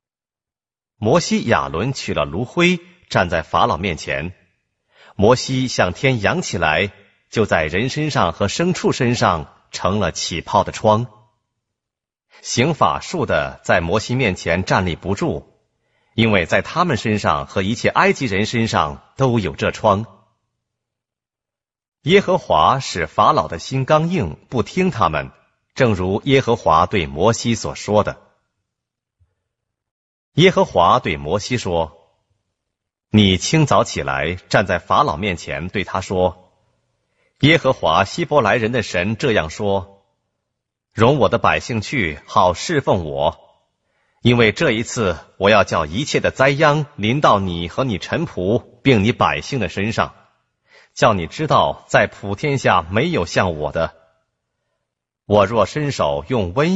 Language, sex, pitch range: Korean, male, 95-130 Hz